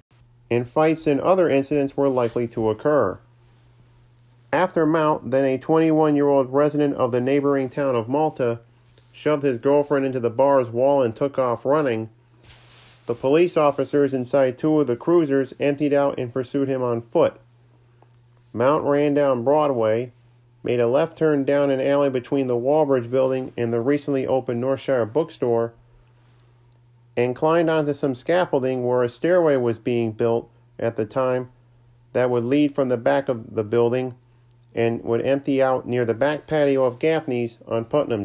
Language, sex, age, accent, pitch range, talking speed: English, male, 40-59, American, 120-145 Hz, 160 wpm